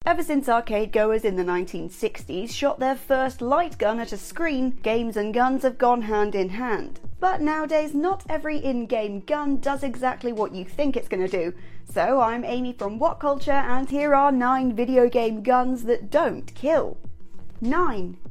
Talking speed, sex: 180 wpm, female